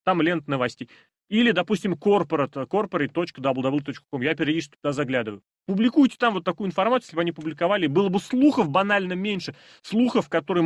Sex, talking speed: male, 150 wpm